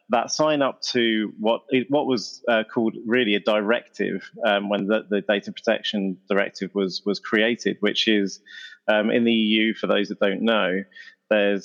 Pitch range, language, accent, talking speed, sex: 95-110 Hz, English, British, 175 wpm, male